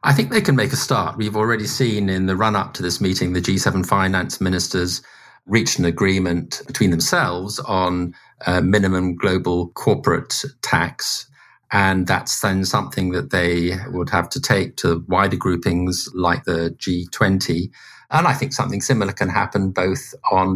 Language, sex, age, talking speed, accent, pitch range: English, male, 50-69, 165 wpm, British, 90-105 Hz